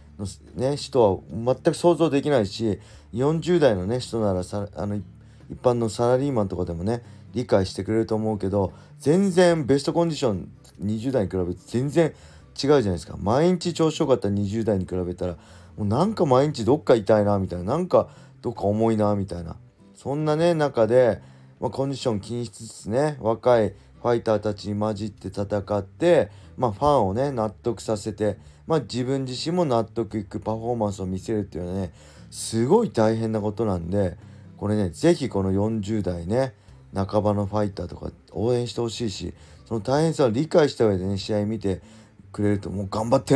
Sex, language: male, Japanese